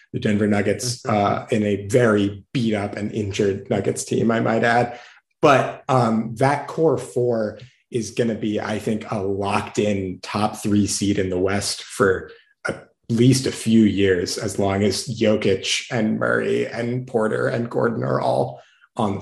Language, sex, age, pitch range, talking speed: English, male, 30-49, 105-125 Hz, 175 wpm